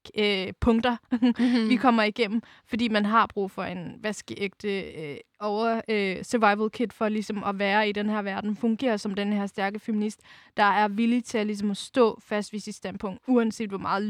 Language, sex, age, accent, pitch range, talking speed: Danish, female, 20-39, native, 210-245 Hz, 195 wpm